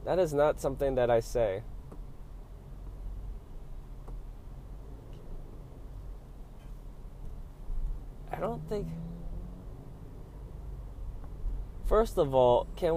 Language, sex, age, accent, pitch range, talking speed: English, male, 20-39, American, 100-155 Hz, 65 wpm